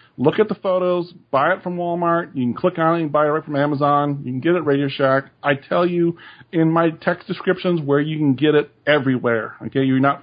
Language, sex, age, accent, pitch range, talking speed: English, male, 40-59, American, 140-180 Hz, 240 wpm